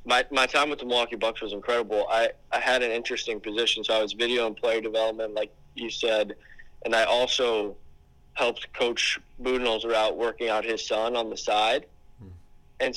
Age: 20-39